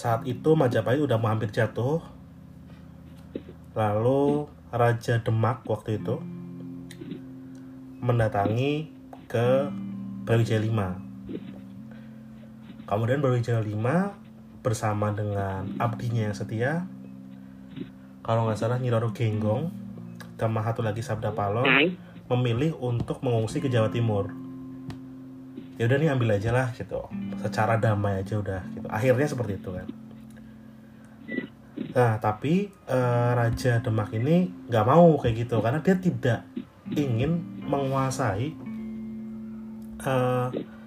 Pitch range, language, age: 110-130 Hz, Indonesian, 30-49